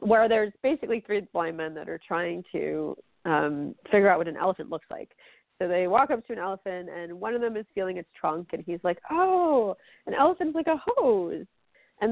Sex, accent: female, American